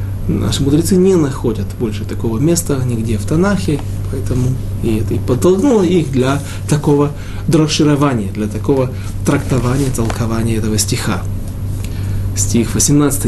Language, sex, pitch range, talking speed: Russian, male, 100-150 Hz, 90 wpm